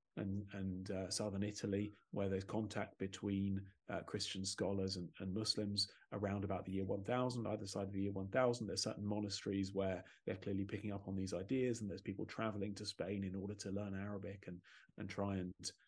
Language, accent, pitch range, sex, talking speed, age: English, British, 95-105 Hz, male, 195 wpm, 30-49